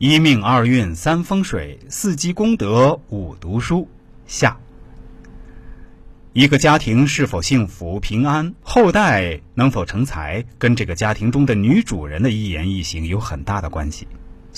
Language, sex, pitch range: Chinese, male, 90-140 Hz